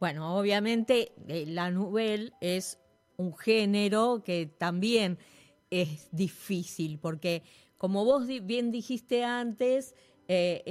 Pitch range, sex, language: 180-240 Hz, female, Spanish